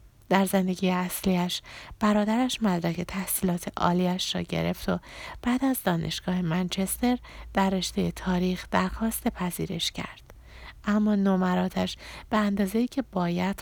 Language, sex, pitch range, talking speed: Persian, female, 175-225 Hz, 115 wpm